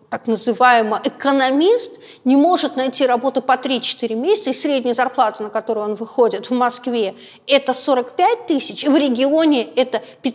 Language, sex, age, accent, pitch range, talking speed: Russian, female, 50-69, native, 230-290 Hz, 150 wpm